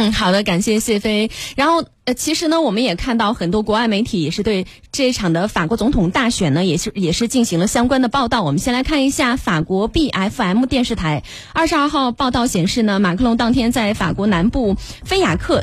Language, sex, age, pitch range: Chinese, female, 20-39, 210-280 Hz